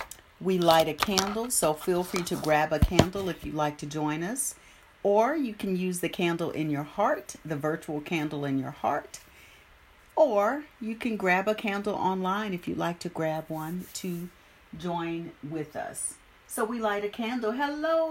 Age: 50-69